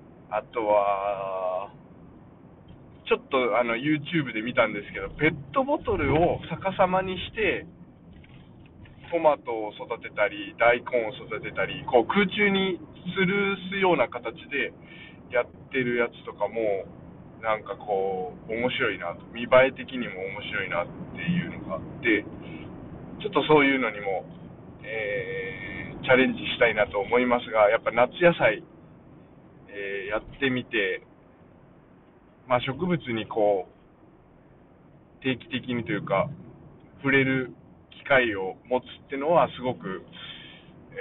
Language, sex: Japanese, male